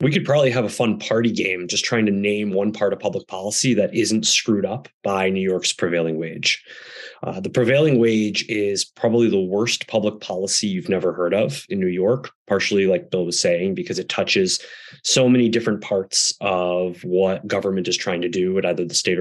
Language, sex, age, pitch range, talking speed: English, male, 20-39, 95-120 Hz, 205 wpm